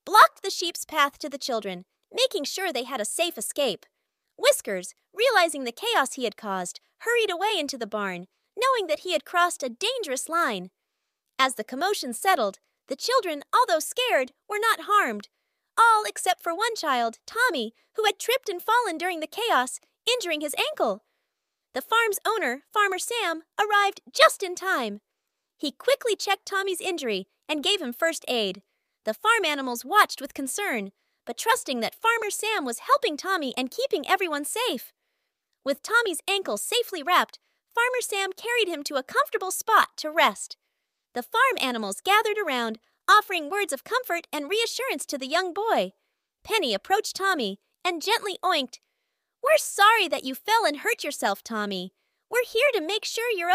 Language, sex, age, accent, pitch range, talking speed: English, female, 30-49, American, 270-430 Hz, 170 wpm